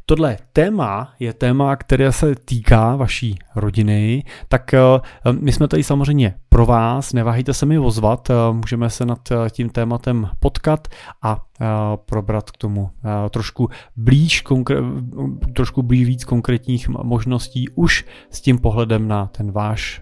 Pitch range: 110-130 Hz